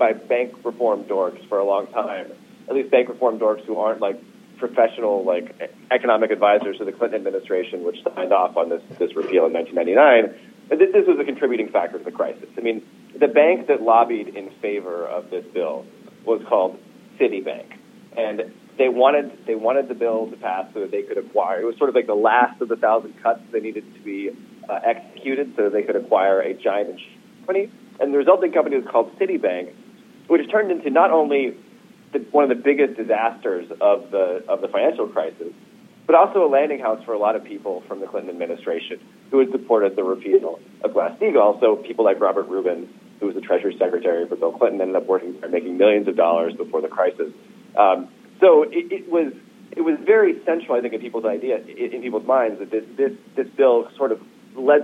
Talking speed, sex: 205 wpm, male